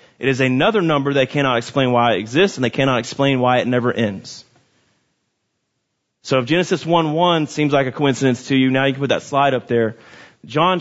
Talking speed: 205 wpm